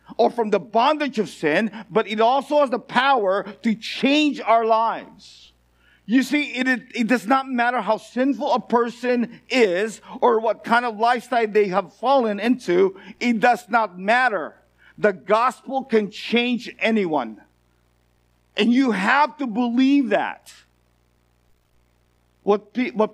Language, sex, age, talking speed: English, male, 50-69, 145 wpm